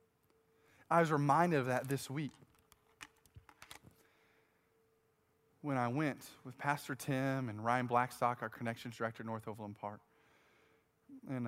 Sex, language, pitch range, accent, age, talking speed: male, English, 120-165 Hz, American, 20-39, 125 wpm